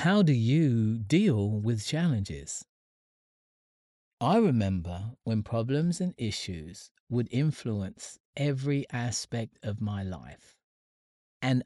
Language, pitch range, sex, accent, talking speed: English, 105-145 Hz, male, British, 105 wpm